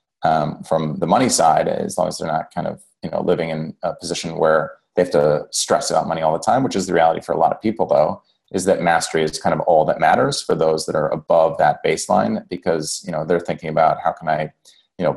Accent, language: American, English